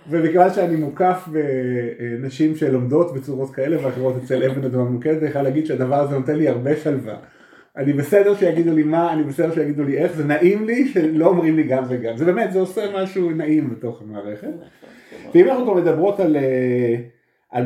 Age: 30-49